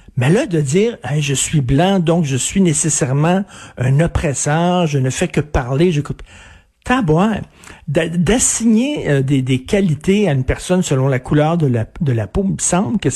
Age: 60-79